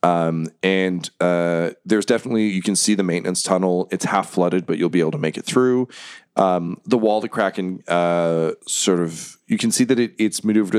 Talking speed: 205 wpm